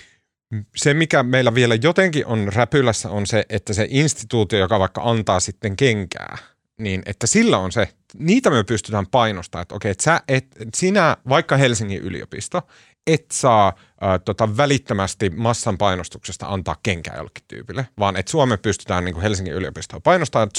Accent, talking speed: native, 160 wpm